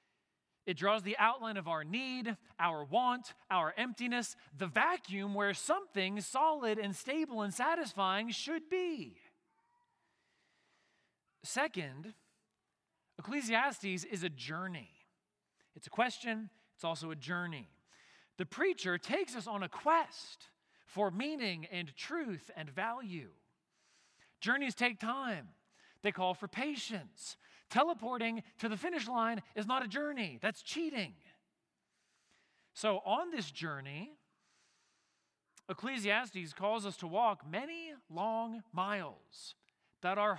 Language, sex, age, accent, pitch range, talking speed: English, male, 40-59, American, 175-245 Hz, 115 wpm